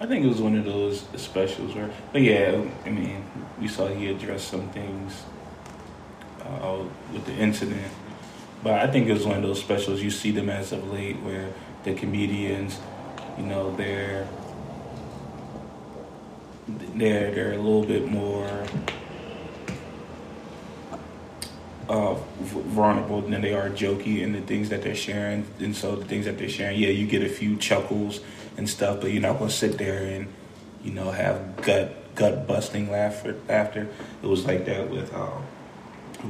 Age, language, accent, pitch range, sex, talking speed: 20-39, English, American, 95-110 Hz, male, 160 wpm